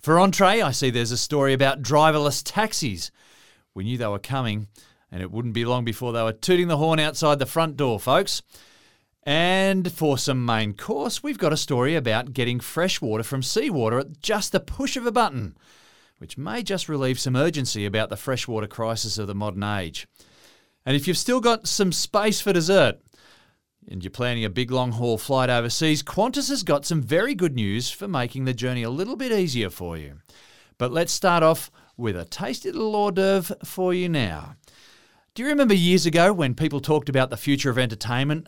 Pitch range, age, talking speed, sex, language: 115-170 Hz, 30-49, 200 wpm, male, English